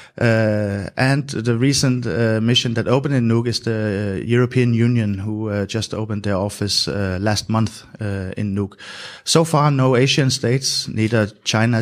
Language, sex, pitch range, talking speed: English, male, 105-120 Hz, 175 wpm